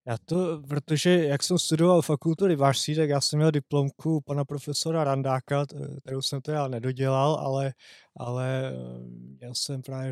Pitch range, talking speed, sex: 130-150 Hz, 155 wpm, male